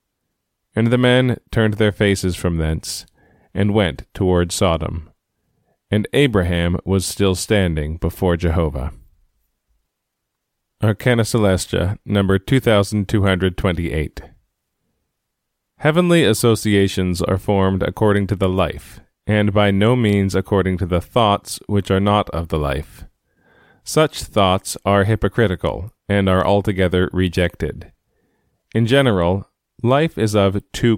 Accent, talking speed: American, 115 wpm